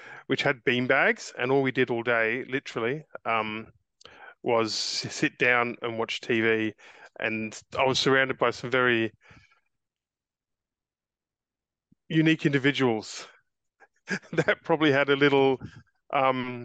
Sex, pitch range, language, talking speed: male, 115-130 Hz, English, 120 wpm